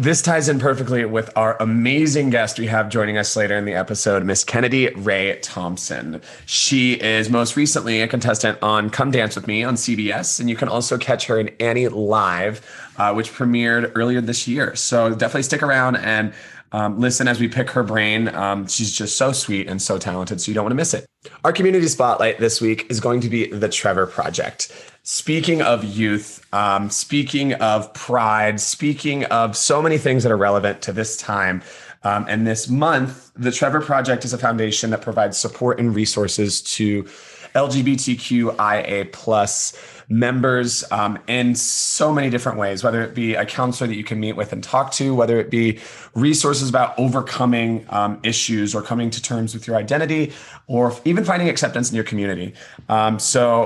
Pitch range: 105-130 Hz